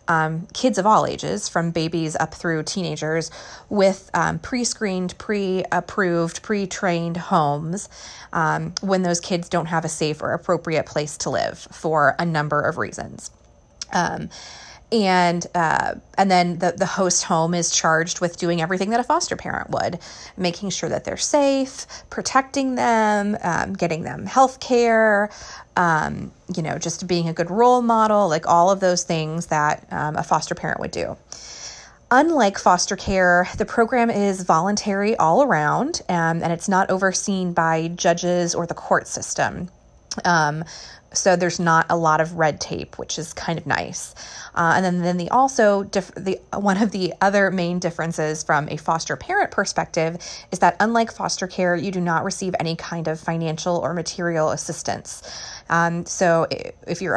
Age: 30-49